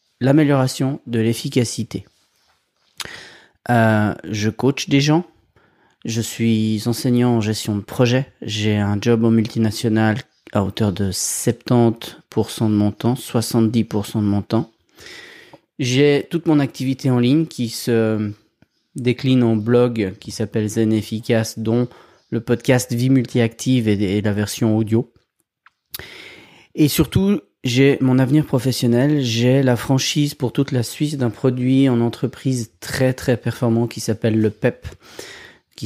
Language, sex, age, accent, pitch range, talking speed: French, male, 30-49, French, 110-135 Hz, 135 wpm